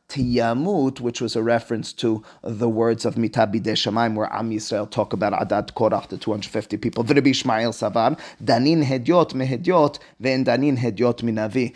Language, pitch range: English, 115-135 Hz